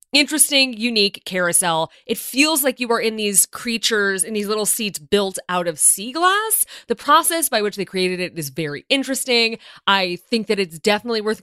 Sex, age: female, 20-39